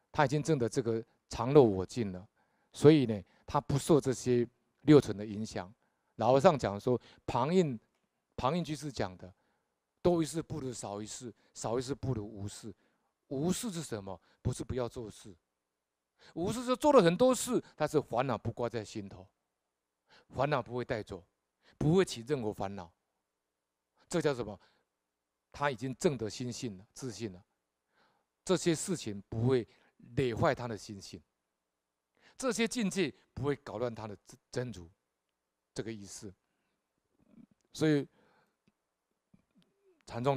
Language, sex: Chinese, male